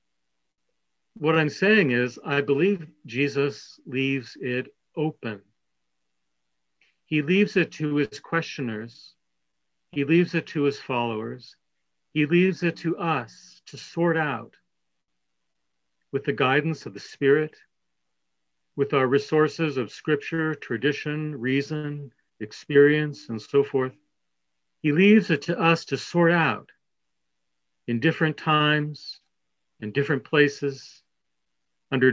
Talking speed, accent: 115 wpm, American